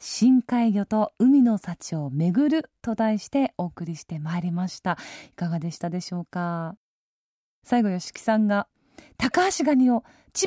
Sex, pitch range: female, 195-285 Hz